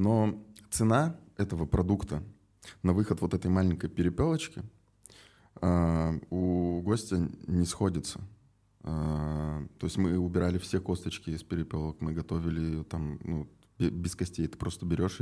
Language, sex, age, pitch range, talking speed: Russian, male, 20-39, 85-105 Hz, 120 wpm